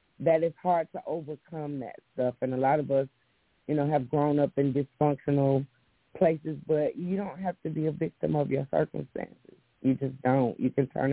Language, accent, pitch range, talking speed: English, American, 135-180 Hz, 200 wpm